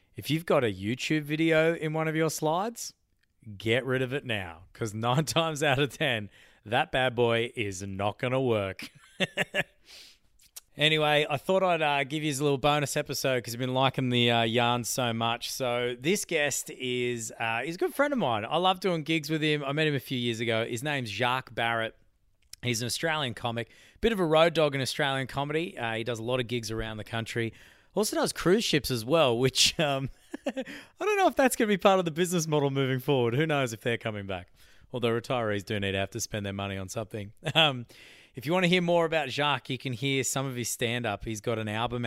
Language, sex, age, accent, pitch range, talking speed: English, male, 20-39, Australian, 110-150 Hz, 230 wpm